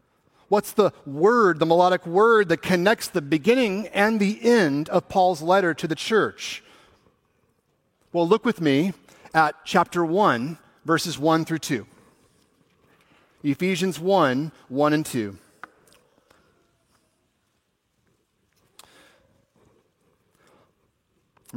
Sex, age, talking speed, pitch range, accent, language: male, 40-59, 100 wpm, 120-165 Hz, American, English